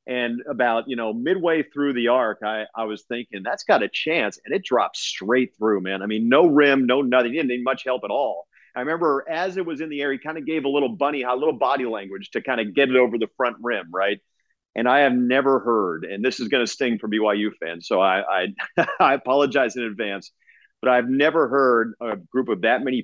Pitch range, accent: 110-140 Hz, American